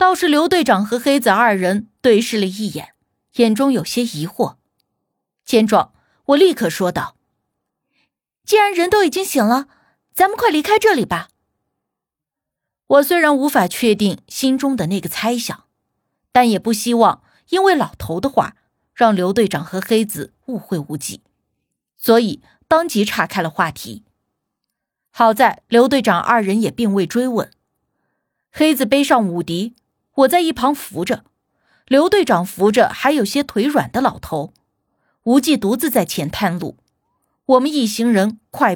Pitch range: 195-280 Hz